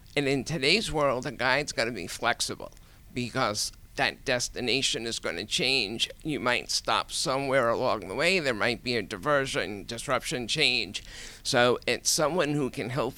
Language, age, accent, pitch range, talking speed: English, 50-69, American, 110-145 Hz, 170 wpm